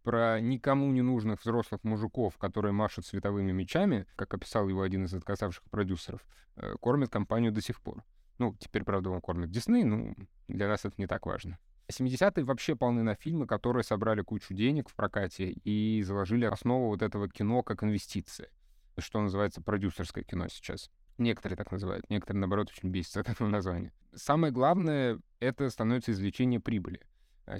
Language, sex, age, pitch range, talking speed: Russian, male, 20-39, 95-125 Hz, 165 wpm